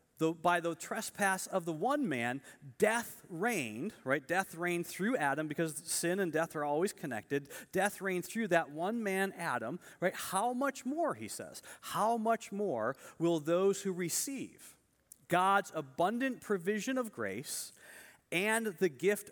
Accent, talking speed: American, 150 wpm